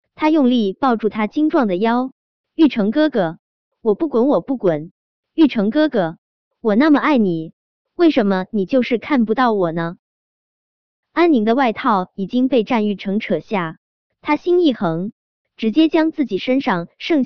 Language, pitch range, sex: Chinese, 195-285 Hz, male